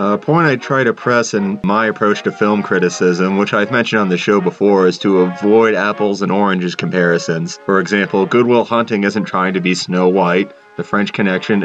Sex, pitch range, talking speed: male, 95-110 Hz, 200 wpm